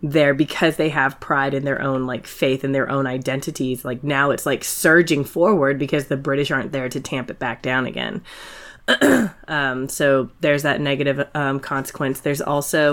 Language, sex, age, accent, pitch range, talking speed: English, female, 20-39, American, 135-150 Hz, 185 wpm